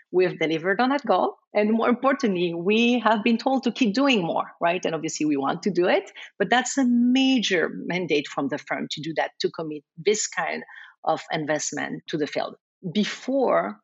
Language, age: English, 50-69